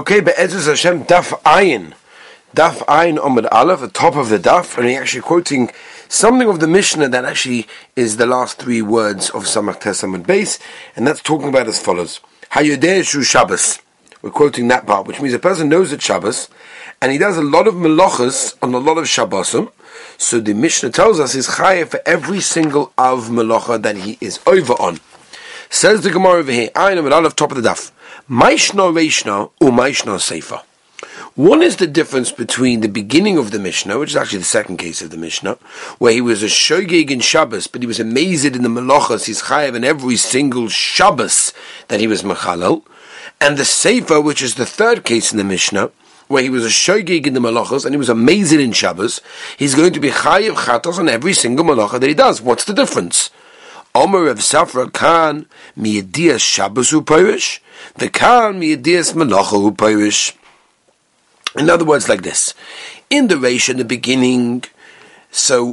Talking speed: 175 wpm